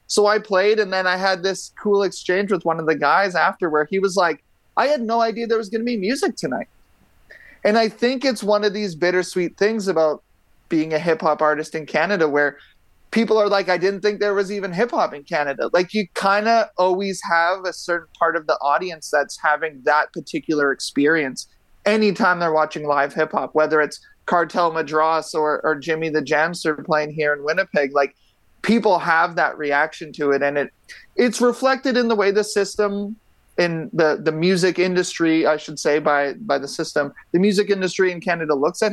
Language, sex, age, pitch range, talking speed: English, male, 30-49, 155-200 Hz, 205 wpm